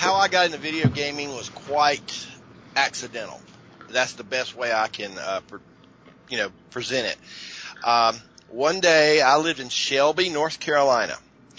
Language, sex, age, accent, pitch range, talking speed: English, male, 50-69, American, 110-140 Hz, 155 wpm